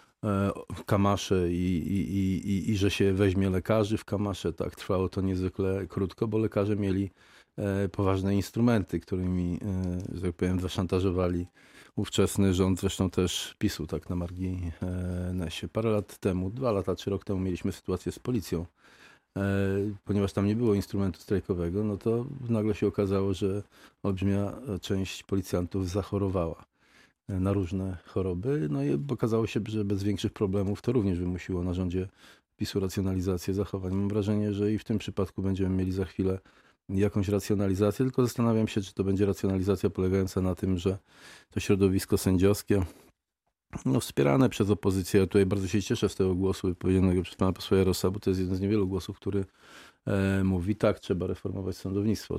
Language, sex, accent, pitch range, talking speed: Polish, male, native, 95-105 Hz, 160 wpm